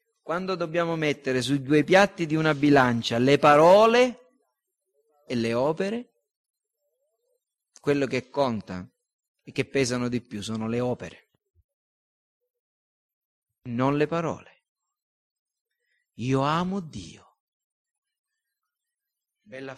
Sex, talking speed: male, 95 wpm